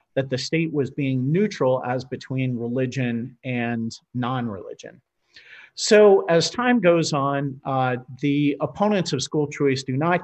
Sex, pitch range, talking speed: male, 125-155 Hz, 140 wpm